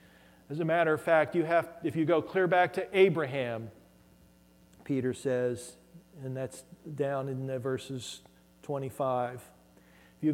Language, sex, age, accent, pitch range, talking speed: English, male, 40-59, American, 115-170 Hz, 145 wpm